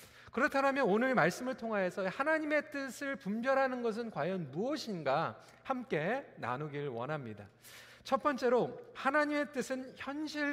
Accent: native